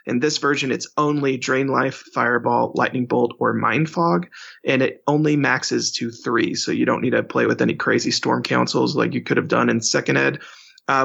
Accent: American